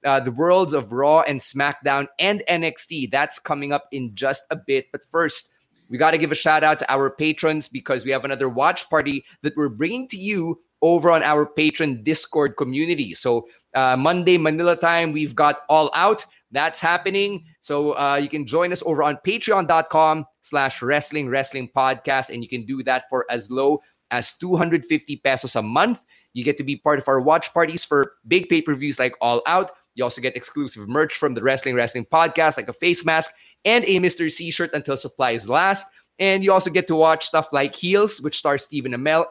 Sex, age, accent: male, 30-49, Filipino